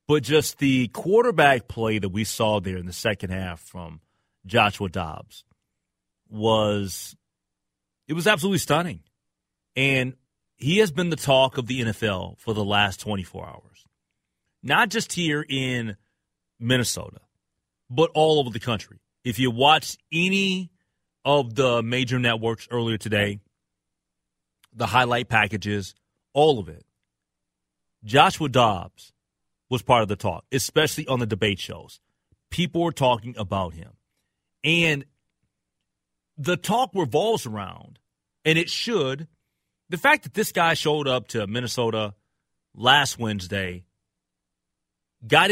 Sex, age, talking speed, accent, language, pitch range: male, 30-49, 130 wpm, American, English, 100-150 Hz